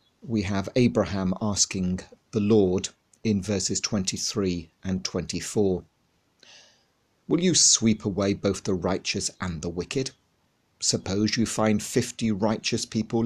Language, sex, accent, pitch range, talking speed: English, male, British, 95-110 Hz, 120 wpm